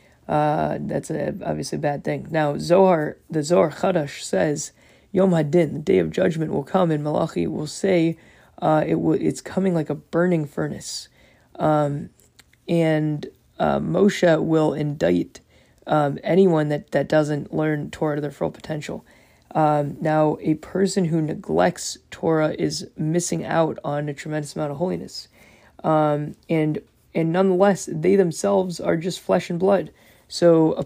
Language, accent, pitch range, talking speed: English, American, 150-180 Hz, 155 wpm